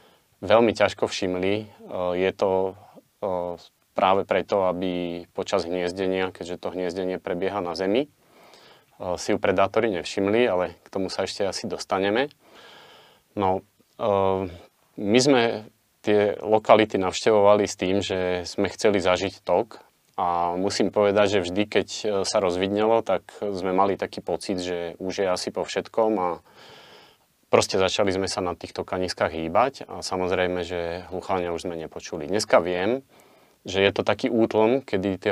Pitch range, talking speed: 90-105 Hz, 145 wpm